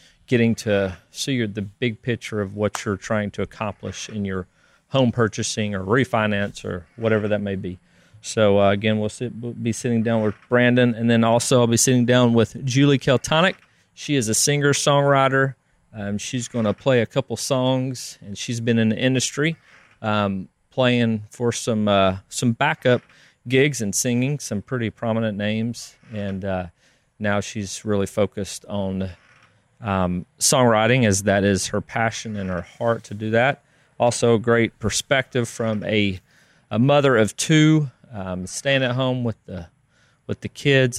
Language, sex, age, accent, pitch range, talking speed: English, male, 40-59, American, 100-130 Hz, 165 wpm